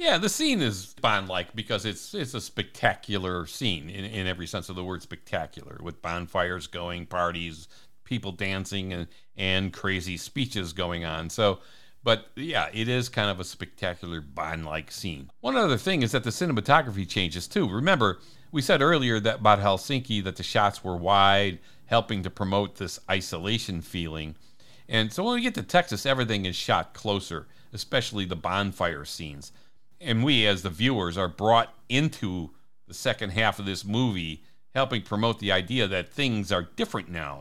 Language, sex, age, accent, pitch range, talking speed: English, male, 60-79, American, 90-115 Hz, 175 wpm